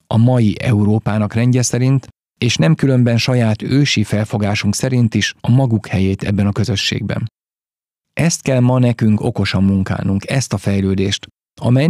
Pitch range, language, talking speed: 105-125 Hz, Hungarian, 145 wpm